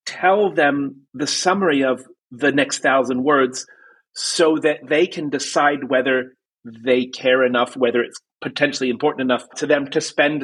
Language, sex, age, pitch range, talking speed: English, male, 30-49, 125-165 Hz, 155 wpm